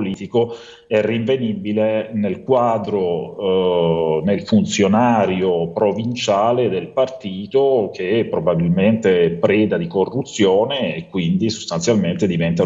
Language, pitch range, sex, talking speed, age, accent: Italian, 95-120 Hz, male, 95 wpm, 40-59, native